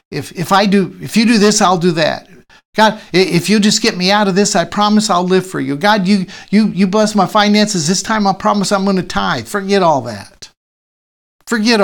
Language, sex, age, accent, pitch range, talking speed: English, male, 60-79, American, 165-210 Hz, 230 wpm